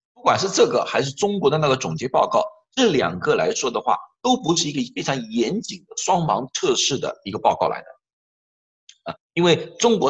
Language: Chinese